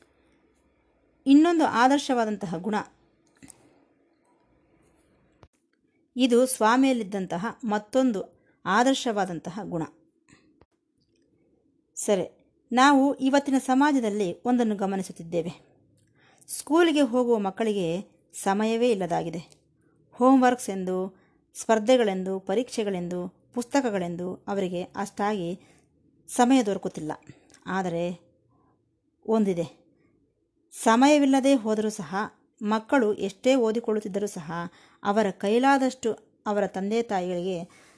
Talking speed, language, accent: 65 wpm, Kannada, native